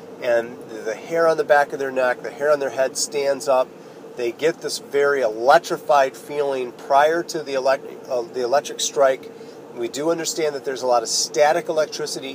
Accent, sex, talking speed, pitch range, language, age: American, male, 185 wpm, 120-145 Hz, English, 40-59